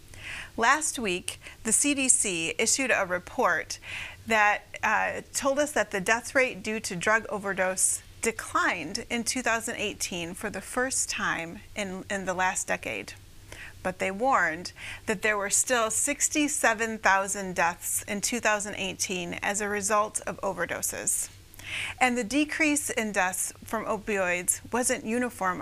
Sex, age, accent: female, 30-49, American